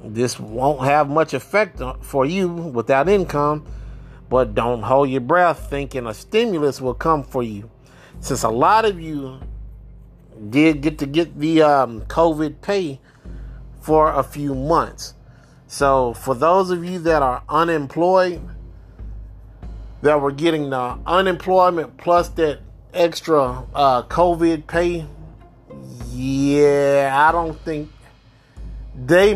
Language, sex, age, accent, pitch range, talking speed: English, male, 30-49, American, 125-170 Hz, 125 wpm